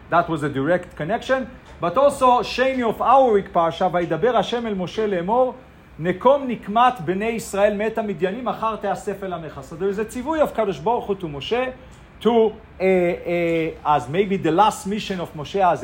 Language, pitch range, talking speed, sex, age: English, 175-235 Hz, 165 wpm, male, 40-59